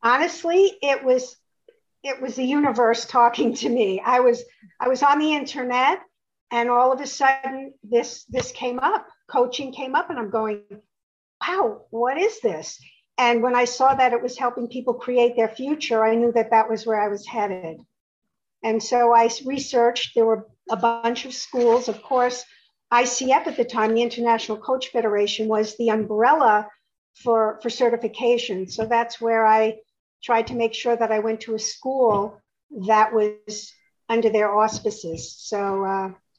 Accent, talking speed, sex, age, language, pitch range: American, 170 wpm, female, 50-69, English, 225-260 Hz